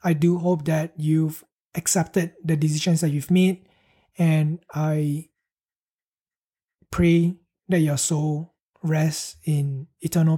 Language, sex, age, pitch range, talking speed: English, male, 20-39, 155-175 Hz, 115 wpm